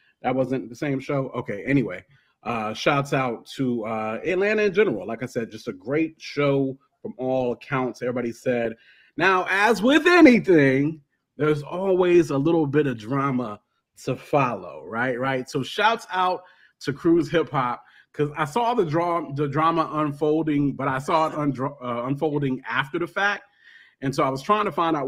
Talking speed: 180 wpm